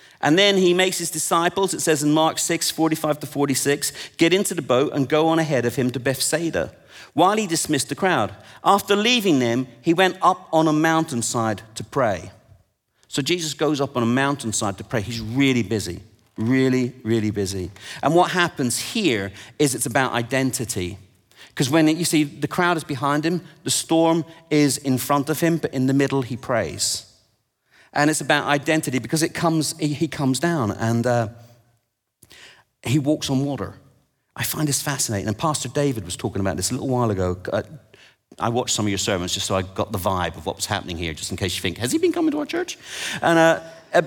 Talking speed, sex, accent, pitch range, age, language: 205 wpm, male, British, 120-165 Hz, 40-59, English